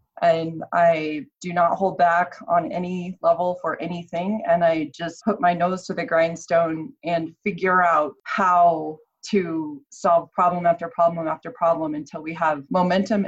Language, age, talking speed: English, 30-49, 160 wpm